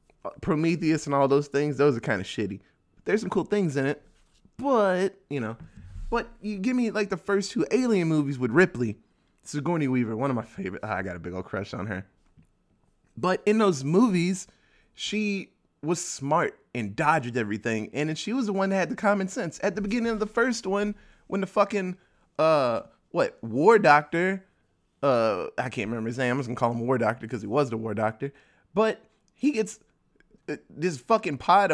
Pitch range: 125-200 Hz